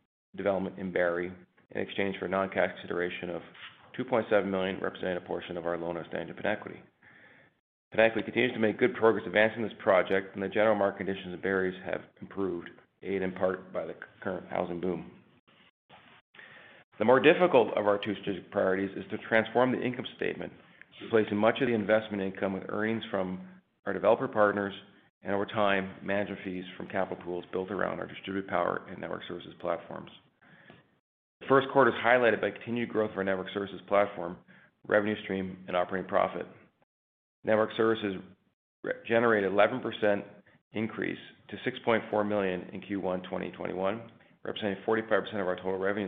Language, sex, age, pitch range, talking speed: English, male, 40-59, 95-110 Hz, 165 wpm